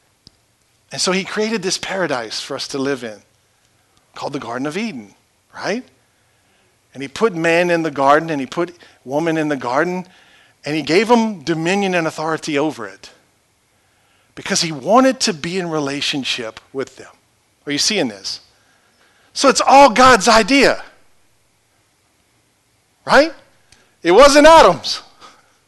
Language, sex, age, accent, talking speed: English, male, 50-69, American, 145 wpm